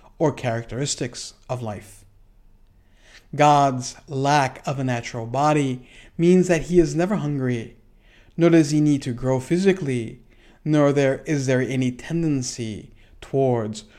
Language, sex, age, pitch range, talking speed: English, male, 50-69, 115-150 Hz, 130 wpm